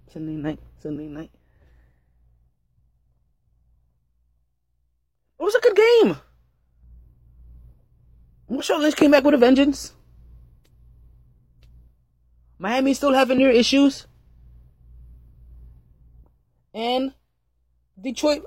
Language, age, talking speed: English, 20-39, 80 wpm